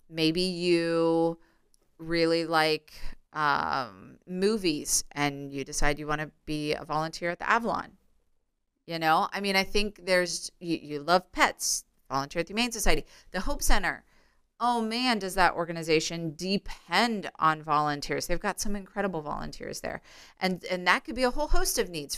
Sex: female